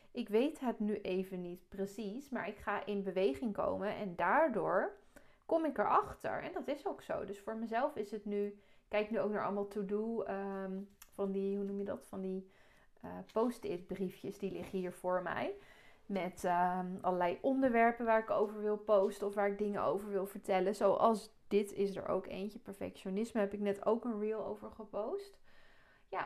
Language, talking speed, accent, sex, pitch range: Dutch, 190 wpm, Dutch, female, 190-225 Hz